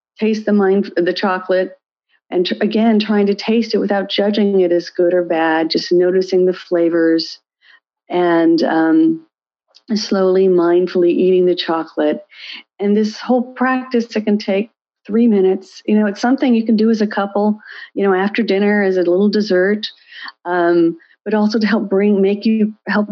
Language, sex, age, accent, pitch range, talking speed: English, female, 50-69, American, 185-220 Hz, 165 wpm